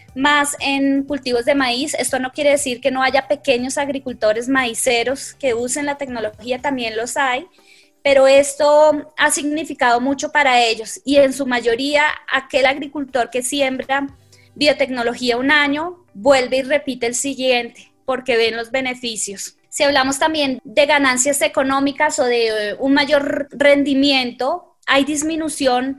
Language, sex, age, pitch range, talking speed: Spanish, female, 20-39, 240-285 Hz, 145 wpm